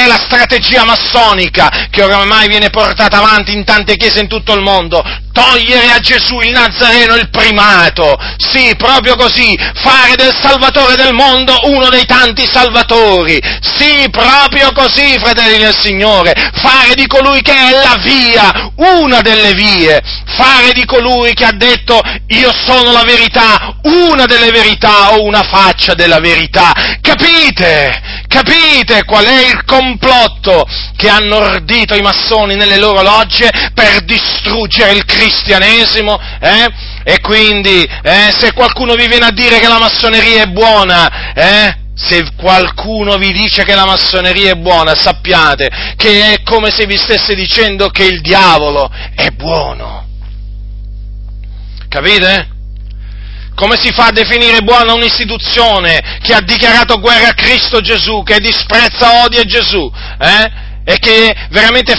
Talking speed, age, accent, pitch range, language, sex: 140 wpm, 40-59, native, 195-240 Hz, Italian, male